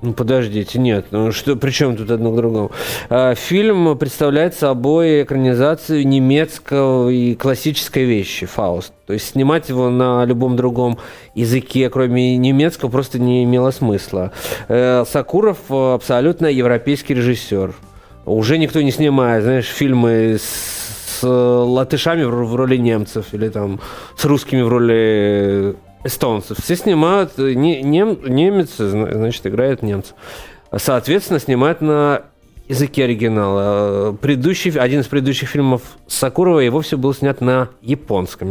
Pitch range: 120-155 Hz